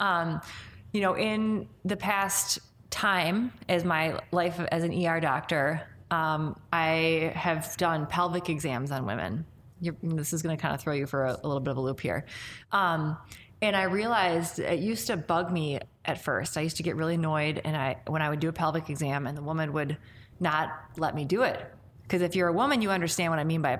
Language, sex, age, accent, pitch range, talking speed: English, female, 20-39, American, 150-180 Hz, 215 wpm